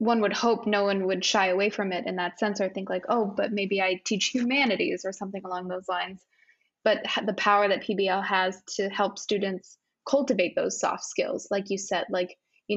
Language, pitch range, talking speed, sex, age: English, 190-220 Hz, 210 wpm, female, 20-39